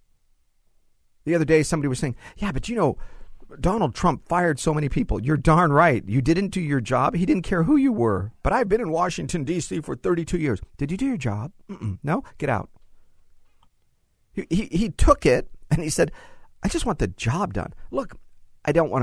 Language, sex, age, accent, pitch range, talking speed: English, male, 40-59, American, 100-155 Hz, 210 wpm